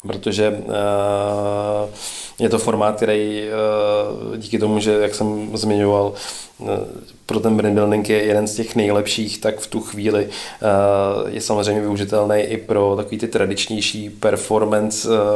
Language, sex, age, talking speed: Czech, male, 20-39, 130 wpm